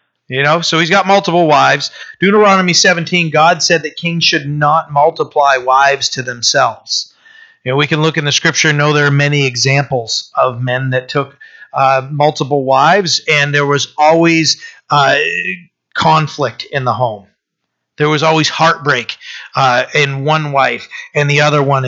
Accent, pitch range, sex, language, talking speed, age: American, 130-160 Hz, male, English, 170 wpm, 40-59